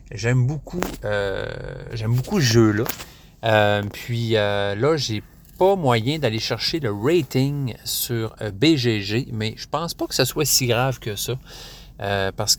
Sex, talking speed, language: male, 165 wpm, French